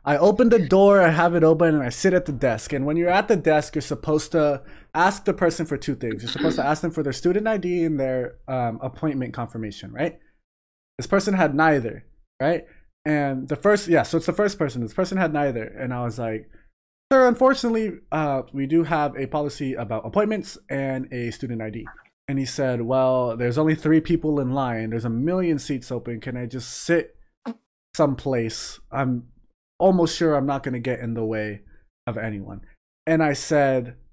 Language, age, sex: English, 20-39, male